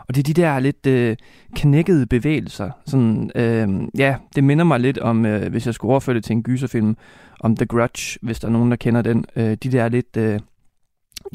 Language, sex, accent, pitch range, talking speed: Danish, male, native, 115-140 Hz, 215 wpm